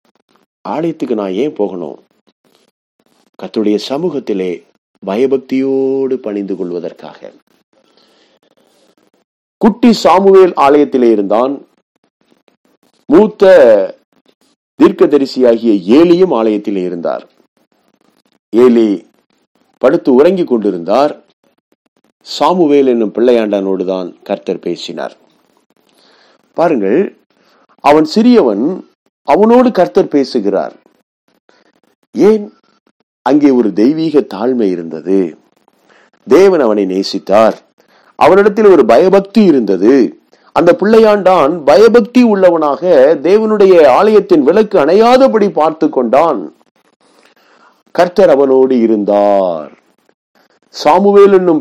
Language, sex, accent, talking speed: Tamil, male, native, 70 wpm